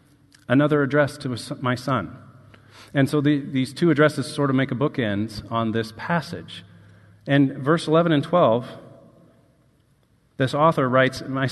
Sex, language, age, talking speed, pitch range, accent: male, English, 40-59, 140 wpm, 120-155 Hz, American